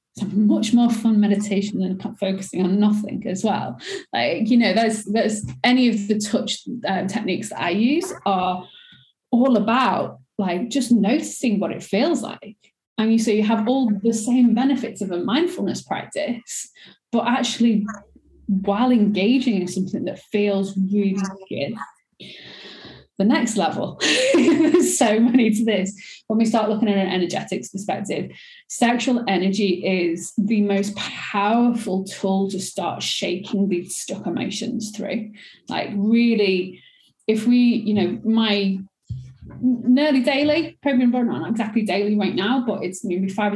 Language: English